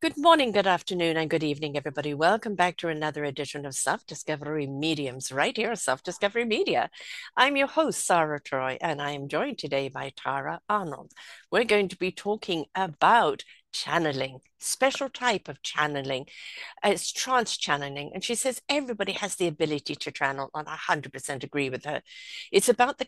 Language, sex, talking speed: English, female, 170 wpm